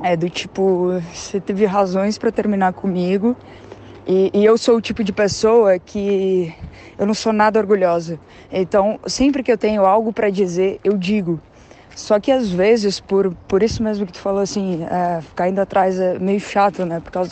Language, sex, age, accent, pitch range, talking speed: Portuguese, female, 20-39, Brazilian, 180-225 Hz, 190 wpm